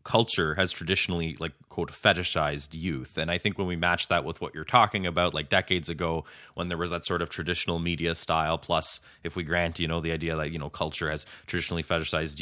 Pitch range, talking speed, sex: 80-95 Hz, 220 wpm, male